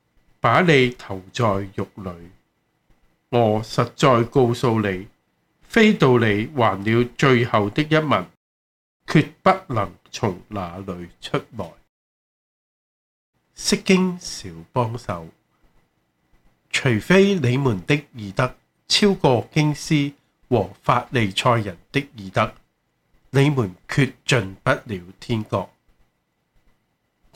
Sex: male